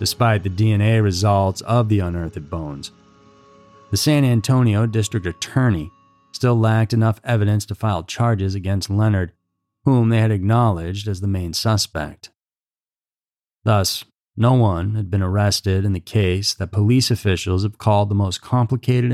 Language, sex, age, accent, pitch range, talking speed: English, male, 40-59, American, 95-115 Hz, 145 wpm